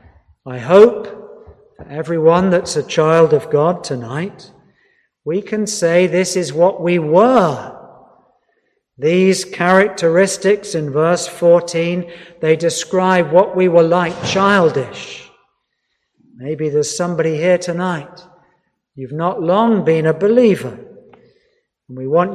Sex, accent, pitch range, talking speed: male, British, 160-220 Hz, 120 wpm